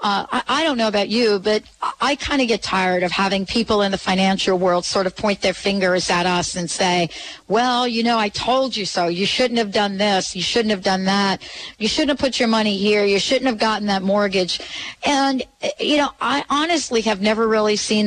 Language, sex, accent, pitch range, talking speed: English, female, American, 190-235 Hz, 225 wpm